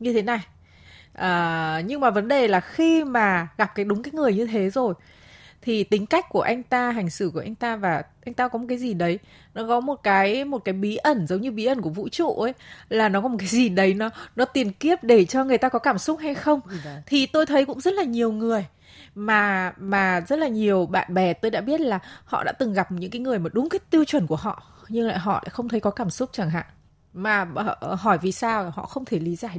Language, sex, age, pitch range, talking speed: Vietnamese, female, 20-39, 195-260 Hz, 260 wpm